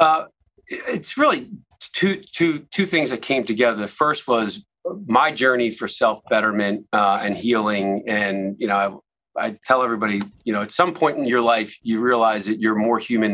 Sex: male